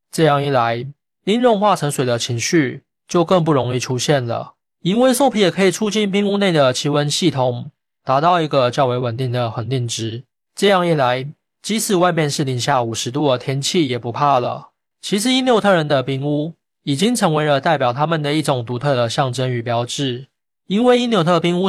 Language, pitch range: Chinese, 130-180 Hz